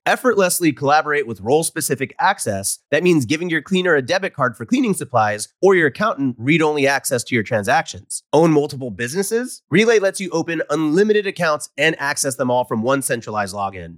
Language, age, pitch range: English, 30-49, 125-185 Hz